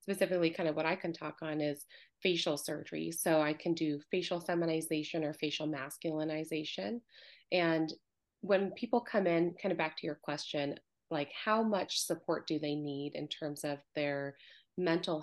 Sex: female